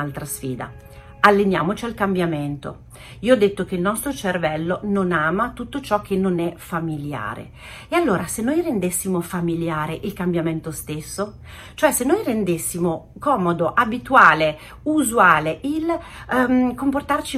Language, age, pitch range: Italian, 40-59, 160-235 Hz